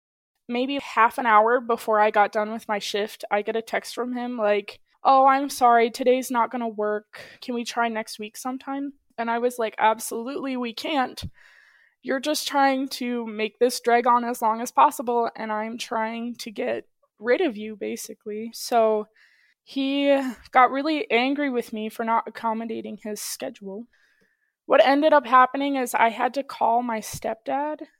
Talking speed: 180 wpm